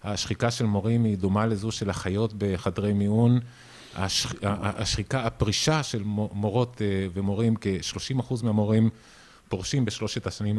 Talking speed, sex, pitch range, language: 120 wpm, male, 100-125 Hz, Hebrew